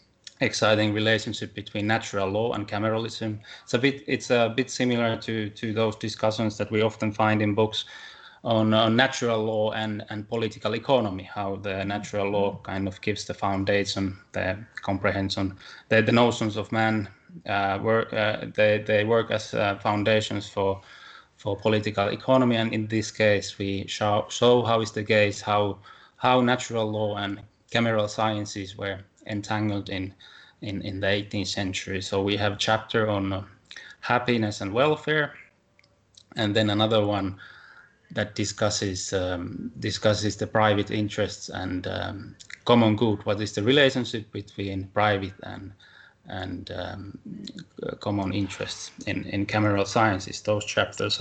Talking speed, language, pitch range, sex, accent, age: 150 wpm, English, 100-110 Hz, male, Finnish, 20-39